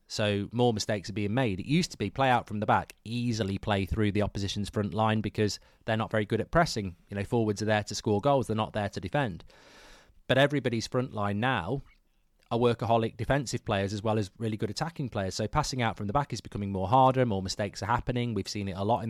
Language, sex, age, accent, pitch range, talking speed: English, male, 30-49, British, 105-135 Hz, 245 wpm